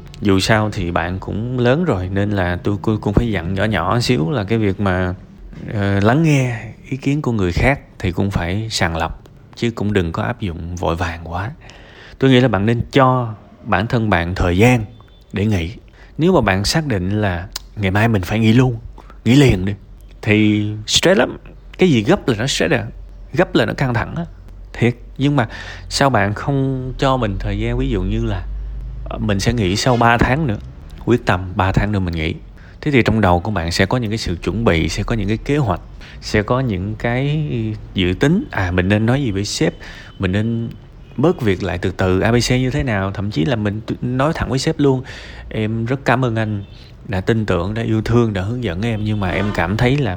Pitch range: 95-120 Hz